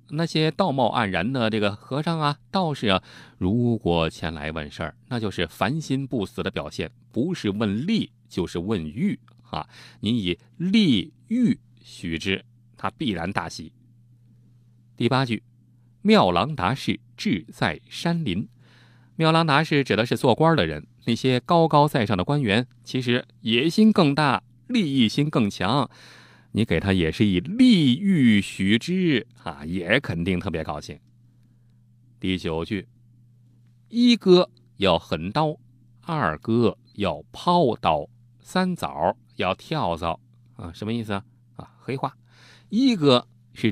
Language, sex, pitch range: Chinese, male, 105-140 Hz